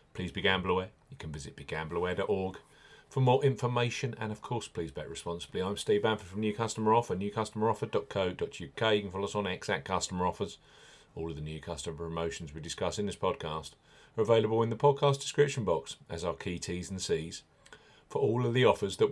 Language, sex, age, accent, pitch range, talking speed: English, male, 40-59, British, 95-115 Hz, 190 wpm